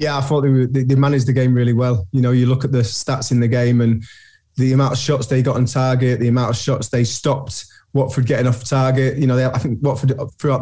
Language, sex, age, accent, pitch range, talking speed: English, male, 20-39, British, 120-135 Hz, 255 wpm